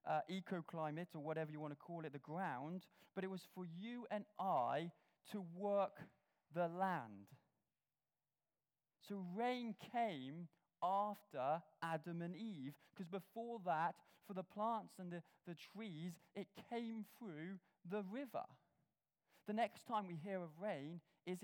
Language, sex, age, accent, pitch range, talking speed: English, male, 20-39, British, 165-210 Hz, 145 wpm